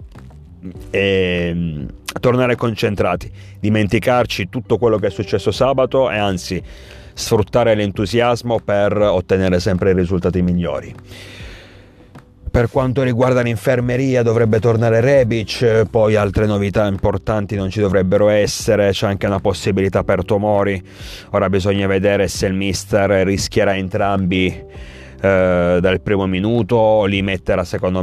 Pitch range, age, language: 90-110 Hz, 30-49, Italian